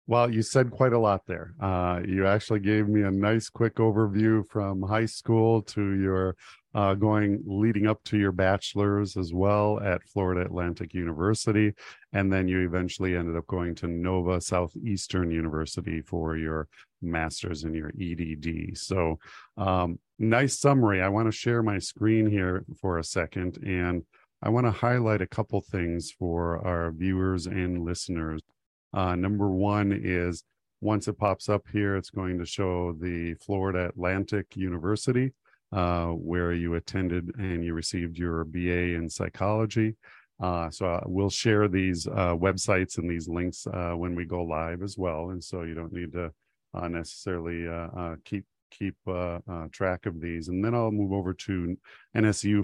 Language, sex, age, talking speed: English, male, 40-59, 170 wpm